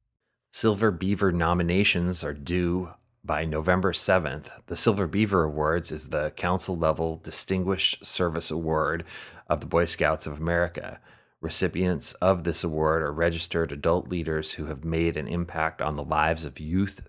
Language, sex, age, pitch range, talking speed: English, male, 30-49, 80-90 Hz, 150 wpm